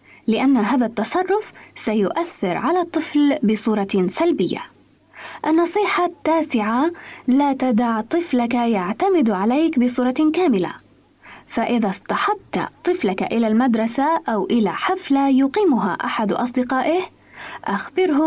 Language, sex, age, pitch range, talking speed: Arabic, female, 20-39, 230-320 Hz, 95 wpm